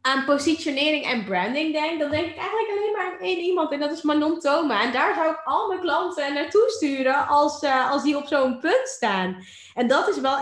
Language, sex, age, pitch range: Dutch, female, 20-39, 215-290 Hz